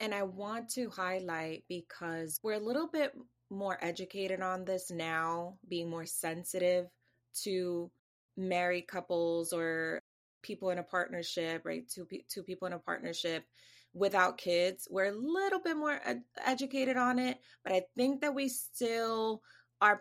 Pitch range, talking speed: 175-230 Hz, 155 wpm